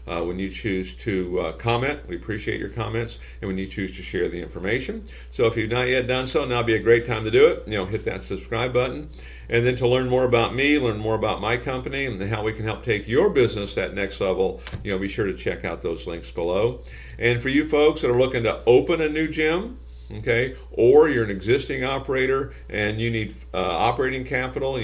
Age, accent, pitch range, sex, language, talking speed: 50-69, American, 95-125 Hz, male, English, 235 wpm